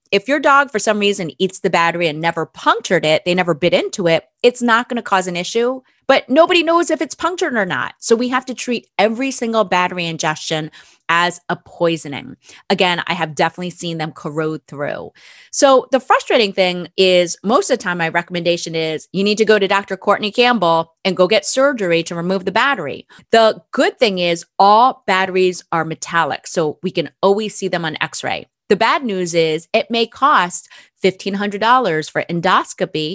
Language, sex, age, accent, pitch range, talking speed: English, female, 30-49, American, 170-235 Hz, 195 wpm